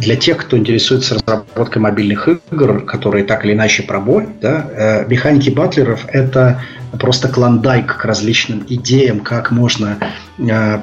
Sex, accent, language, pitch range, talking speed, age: male, native, Russian, 105-130 Hz, 125 wpm, 30-49